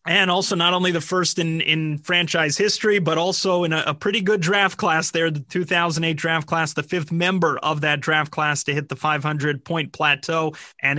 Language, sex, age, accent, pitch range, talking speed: English, male, 30-49, American, 150-175 Hz, 200 wpm